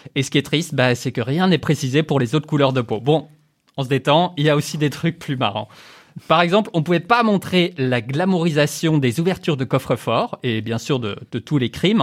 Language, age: French, 20-39